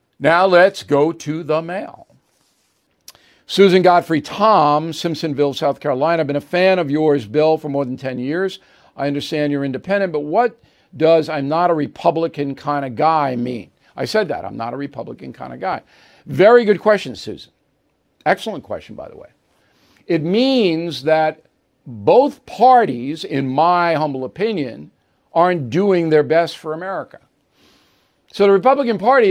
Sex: male